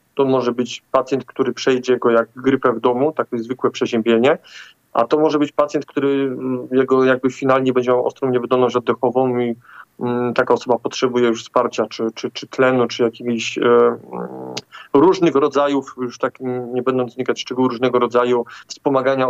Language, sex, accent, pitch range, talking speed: Polish, male, native, 120-135 Hz, 165 wpm